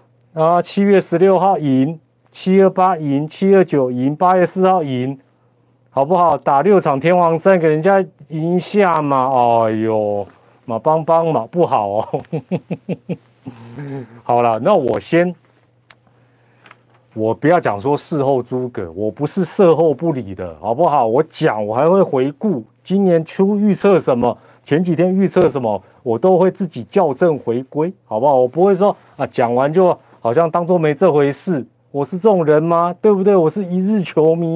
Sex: male